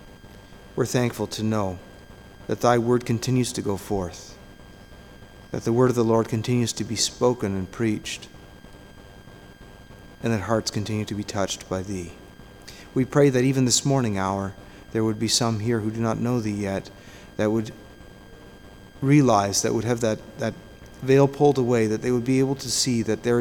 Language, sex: English, male